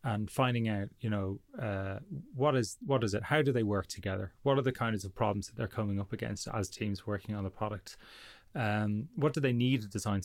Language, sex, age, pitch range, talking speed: English, male, 30-49, 100-125 Hz, 235 wpm